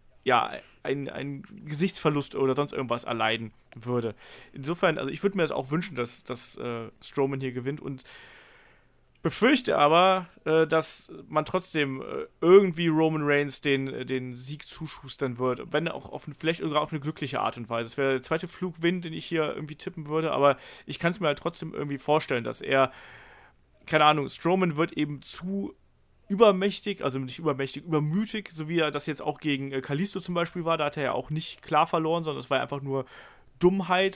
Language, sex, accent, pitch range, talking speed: German, male, German, 135-170 Hz, 195 wpm